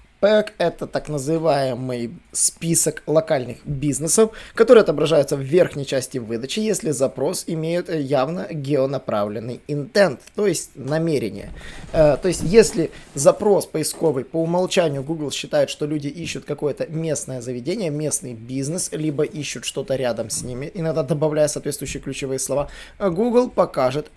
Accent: native